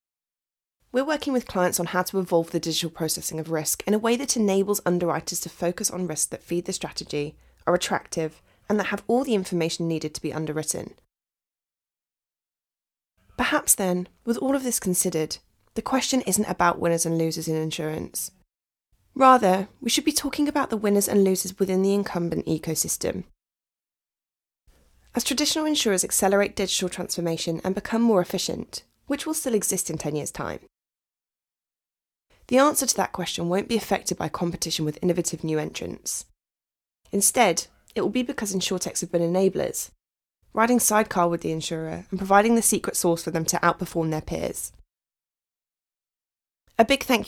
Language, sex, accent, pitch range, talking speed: English, female, British, 165-215 Hz, 165 wpm